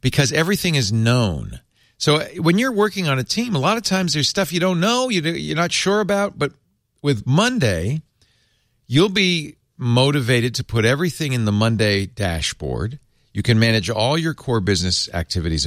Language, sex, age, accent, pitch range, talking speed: English, male, 50-69, American, 105-140 Hz, 170 wpm